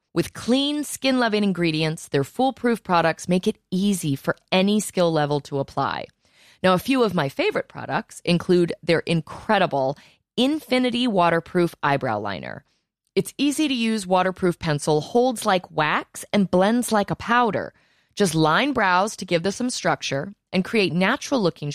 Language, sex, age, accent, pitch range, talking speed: English, female, 20-39, American, 150-210 Hz, 145 wpm